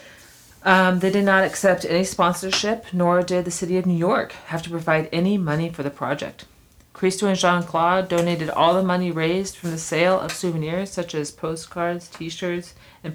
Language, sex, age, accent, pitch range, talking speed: English, female, 40-59, American, 150-180 Hz, 185 wpm